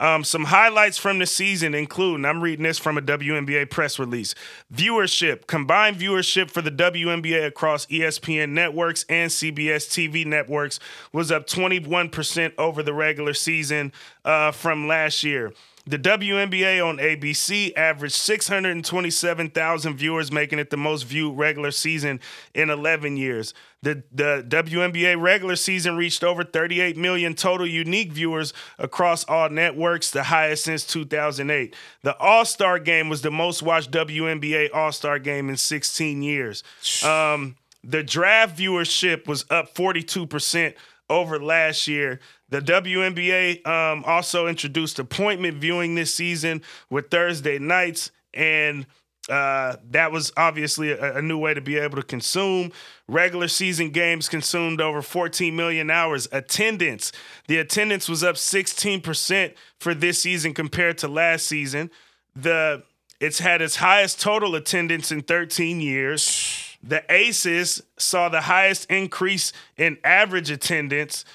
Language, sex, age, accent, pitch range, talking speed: English, male, 30-49, American, 150-175 Hz, 140 wpm